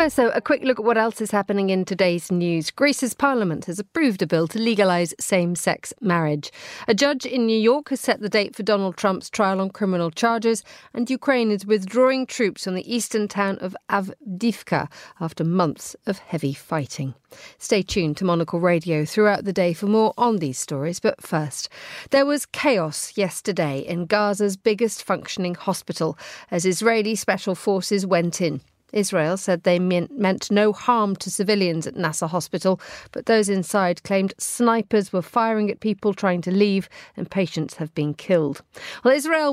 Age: 40-59